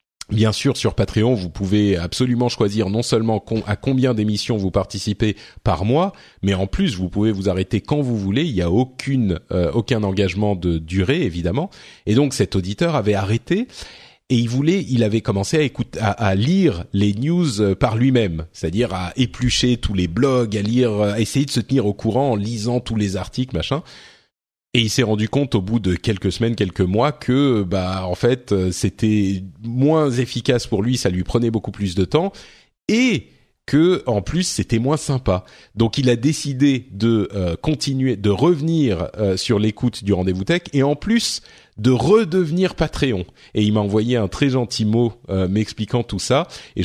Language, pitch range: French, 100-130 Hz